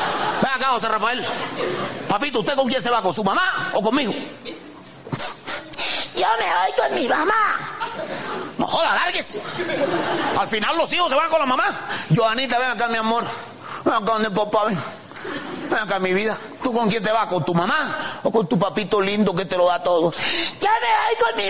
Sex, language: male, Spanish